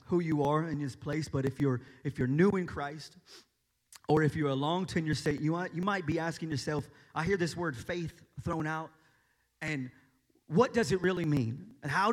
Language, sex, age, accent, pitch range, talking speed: English, male, 30-49, American, 145-225 Hz, 215 wpm